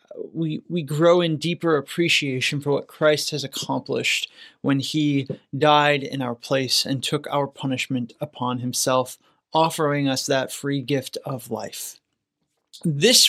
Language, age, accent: English, 20-39, American